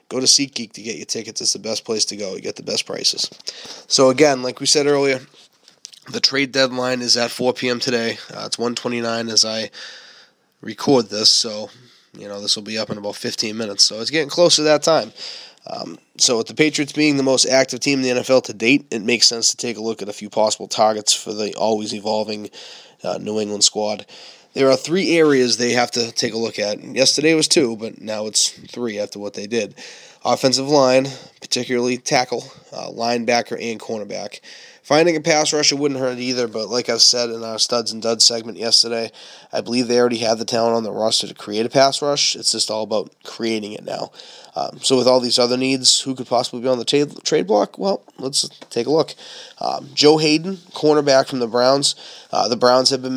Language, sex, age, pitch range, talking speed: English, male, 20-39, 110-135 Hz, 220 wpm